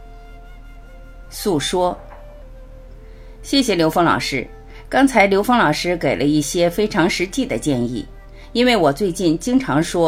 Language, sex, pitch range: Chinese, female, 155-255 Hz